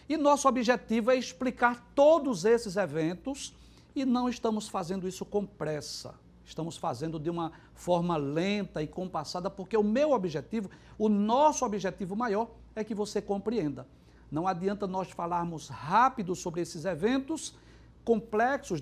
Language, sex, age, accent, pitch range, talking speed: Portuguese, male, 60-79, Brazilian, 175-230 Hz, 140 wpm